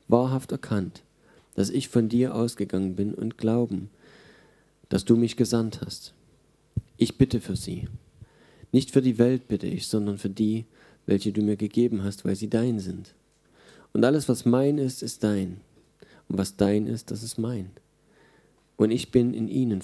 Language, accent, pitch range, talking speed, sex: German, German, 100-120 Hz, 170 wpm, male